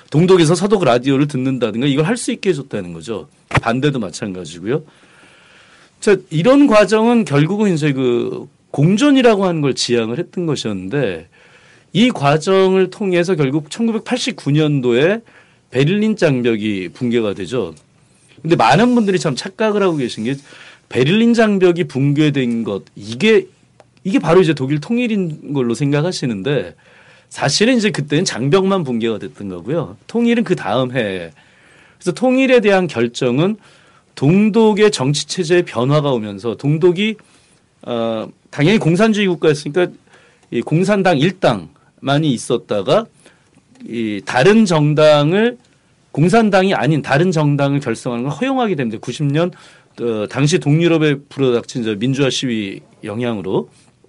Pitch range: 125-190 Hz